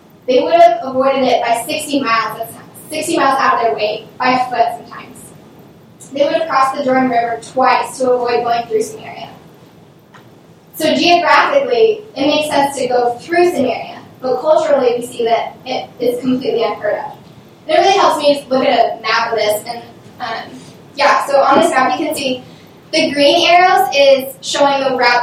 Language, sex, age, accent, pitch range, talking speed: English, female, 10-29, American, 240-295 Hz, 185 wpm